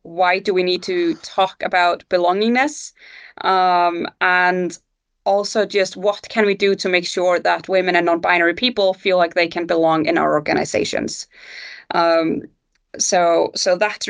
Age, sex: 20-39, female